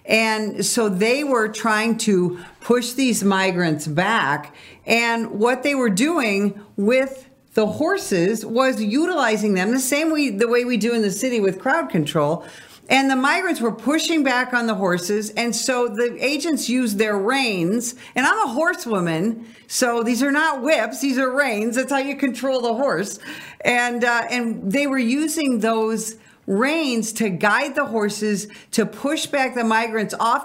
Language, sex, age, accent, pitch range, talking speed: English, female, 50-69, American, 195-255 Hz, 170 wpm